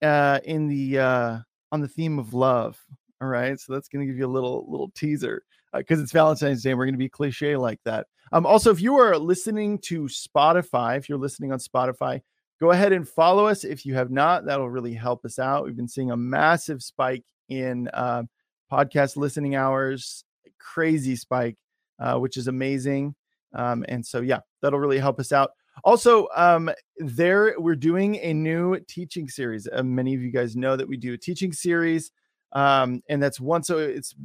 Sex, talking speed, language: male, 200 wpm, English